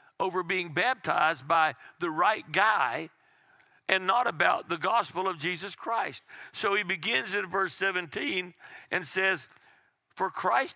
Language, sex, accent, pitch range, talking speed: English, male, American, 160-195 Hz, 140 wpm